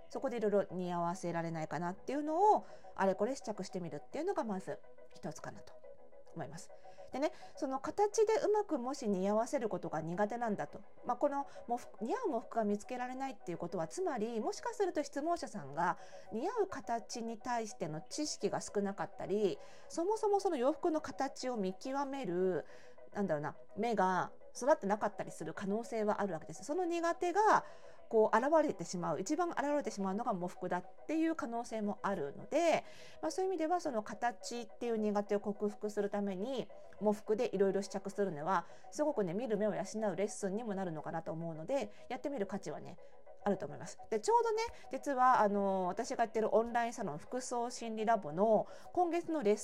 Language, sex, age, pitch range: Japanese, female, 40-59, 190-275 Hz